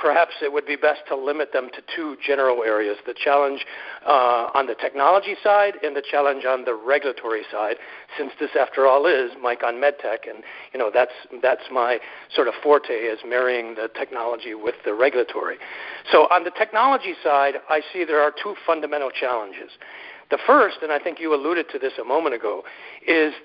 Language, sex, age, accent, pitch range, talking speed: English, male, 50-69, American, 140-210 Hz, 190 wpm